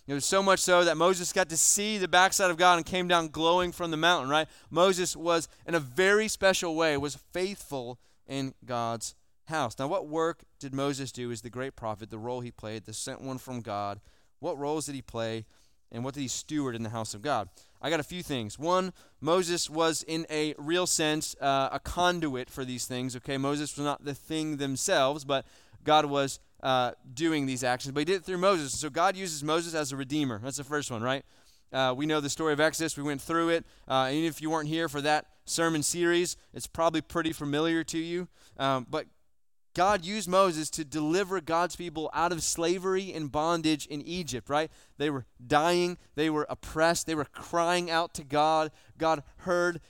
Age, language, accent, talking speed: 20-39, English, American, 210 wpm